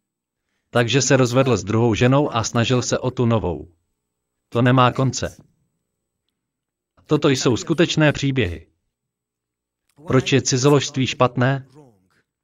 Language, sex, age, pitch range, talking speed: Slovak, male, 40-59, 110-150 Hz, 110 wpm